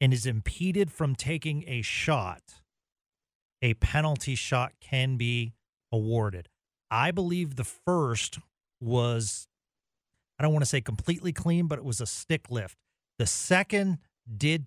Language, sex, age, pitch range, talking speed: English, male, 40-59, 120-170 Hz, 140 wpm